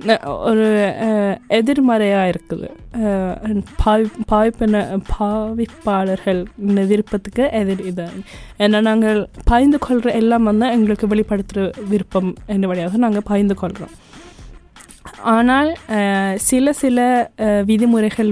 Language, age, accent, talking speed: Tamil, 20-39, native, 90 wpm